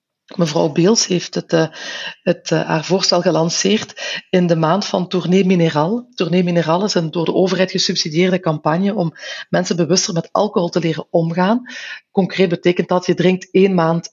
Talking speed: 160 wpm